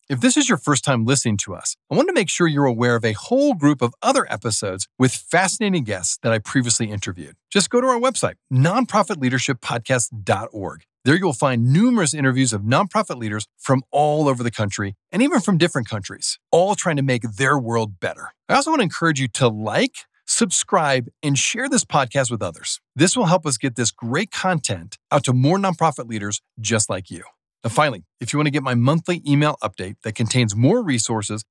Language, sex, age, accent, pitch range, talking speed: English, male, 40-59, American, 115-175 Hz, 205 wpm